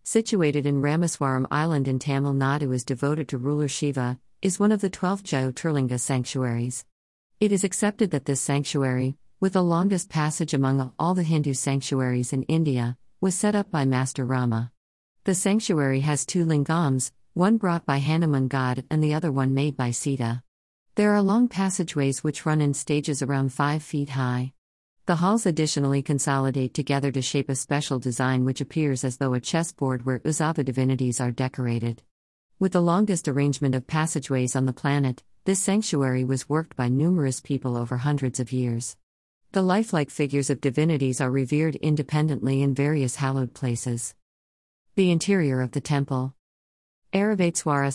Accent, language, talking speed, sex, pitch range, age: American, Tamil, 165 wpm, female, 130-155 Hz, 50-69